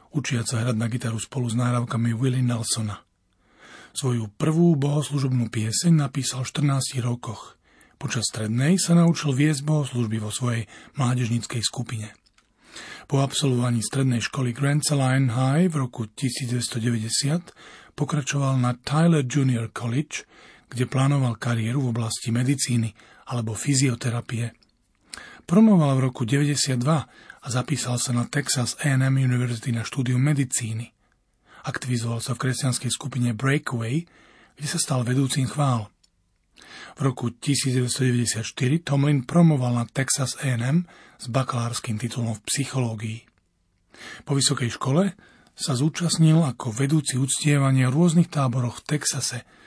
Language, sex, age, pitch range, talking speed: Slovak, male, 40-59, 120-145 Hz, 125 wpm